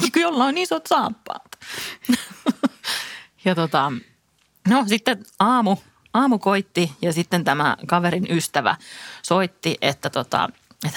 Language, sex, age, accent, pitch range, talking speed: Finnish, female, 30-49, native, 165-225 Hz, 110 wpm